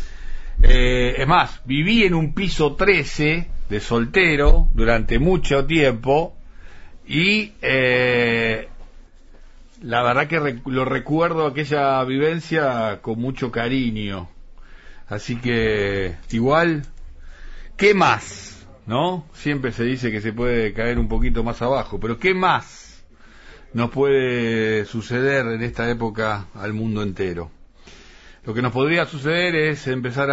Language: Spanish